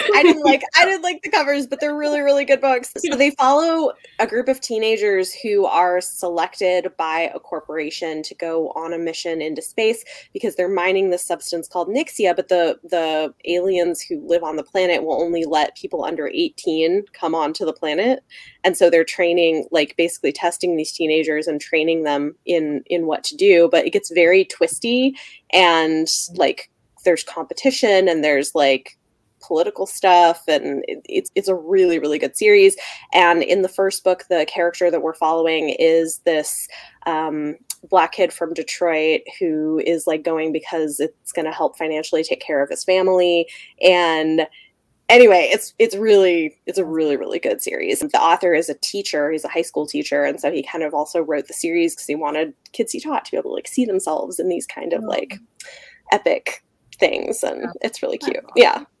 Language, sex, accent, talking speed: English, female, American, 190 wpm